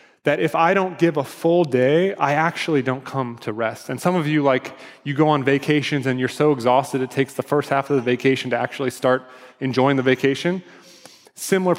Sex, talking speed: male, 215 wpm